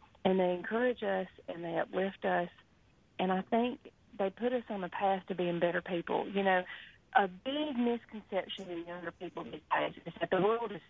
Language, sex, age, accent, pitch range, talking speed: English, female, 40-59, American, 180-220 Hz, 185 wpm